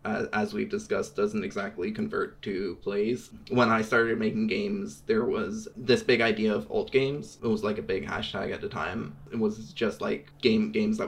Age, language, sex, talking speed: 20-39, English, male, 205 wpm